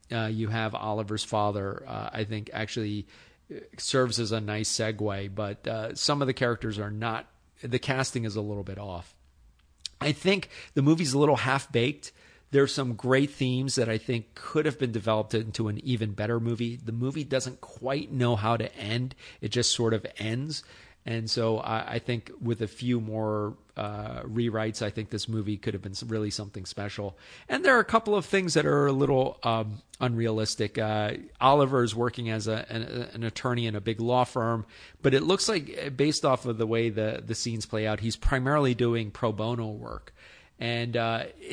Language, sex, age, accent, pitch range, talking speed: English, male, 40-59, American, 110-130 Hz, 200 wpm